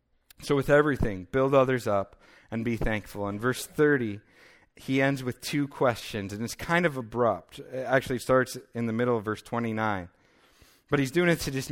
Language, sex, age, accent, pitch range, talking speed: English, male, 40-59, American, 110-140 Hz, 190 wpm